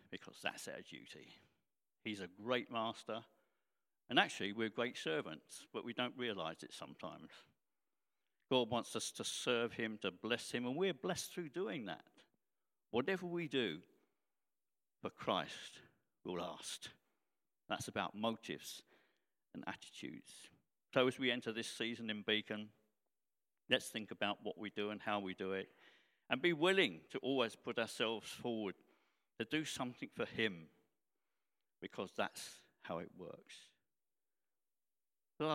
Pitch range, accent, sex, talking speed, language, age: 95-125 Hz, British, male, 140 wpm, English, 50-69